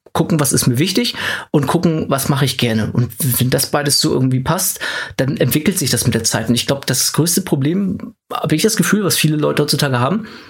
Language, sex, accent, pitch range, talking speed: German, male, German, 135-170 Hz, 230 wpm